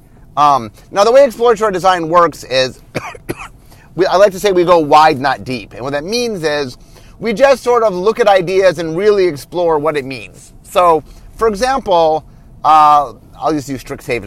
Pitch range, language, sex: 140-210 Hz, English, male